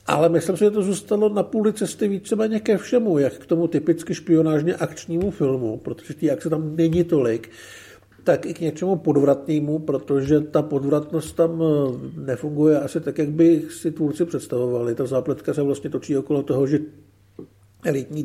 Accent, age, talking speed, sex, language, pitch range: native, 50-69, 165 wpm, male, Czech, 140-170 Hz